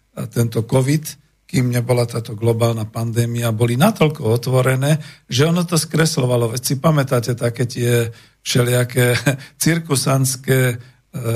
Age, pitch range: 50-69, 115-145 Hz